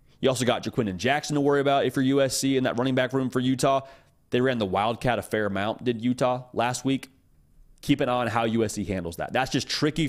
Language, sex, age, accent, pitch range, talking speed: English, male, 30-49, American, 110-140 Hz, 245 wpm